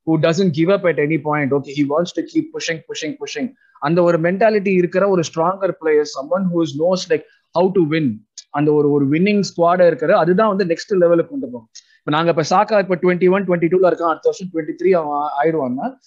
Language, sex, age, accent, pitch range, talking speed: Tamil, male, 20-39, native, 160-205 Hz, 200 wpm